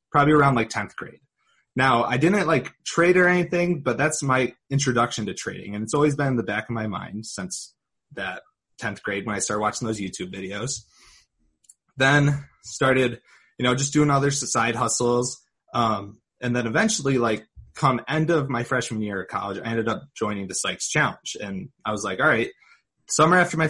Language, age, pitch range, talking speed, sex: English, 20-39, 115-145 Hz, 195 wpm, male